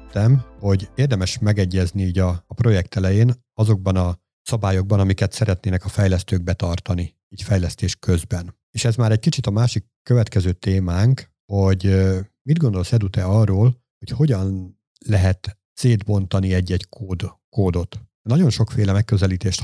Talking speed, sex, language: 130 wpm, male, Hungarian